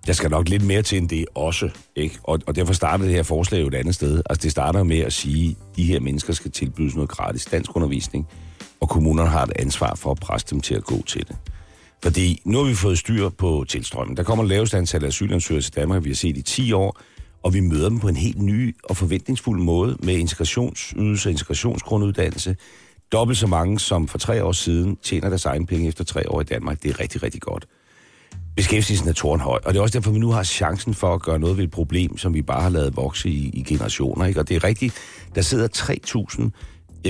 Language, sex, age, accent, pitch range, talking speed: Danish, male, 60-79, native, 85-110 Hz, 240 wpm